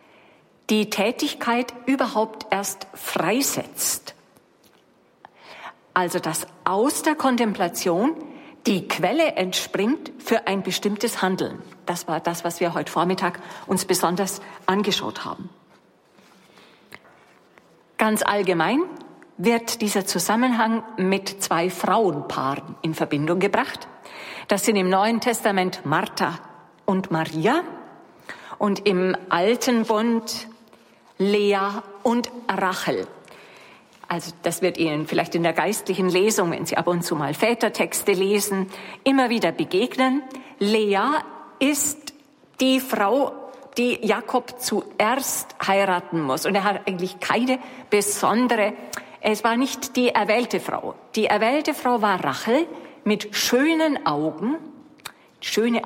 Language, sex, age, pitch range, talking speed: German, female, 50-69, 185-245 Hz, 110 wpm